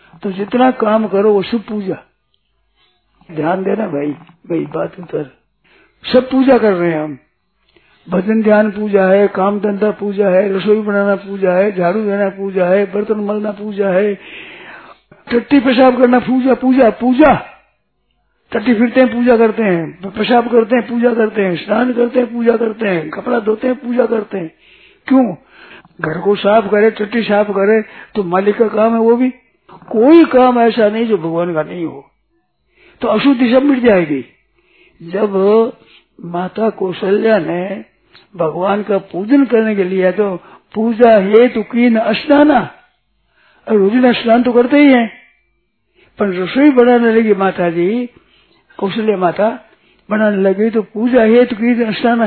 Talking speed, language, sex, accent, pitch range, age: 150 wpm, Hindi, male, native, 195-245 Hz, 50-69